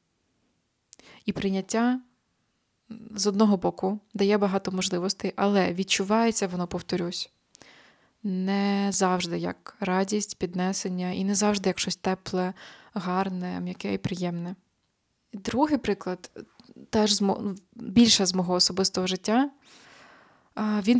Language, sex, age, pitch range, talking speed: Ukrainian, female, 20-39, 185-215 Hz, 105 wpm